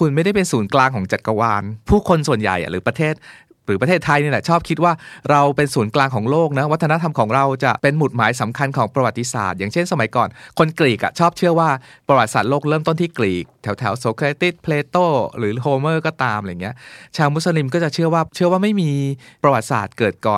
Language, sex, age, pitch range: Thai, male, 20-39, 120-155 Hz